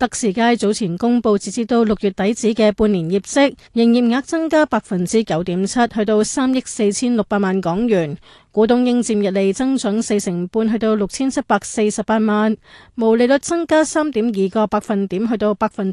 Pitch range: 205-240 Hz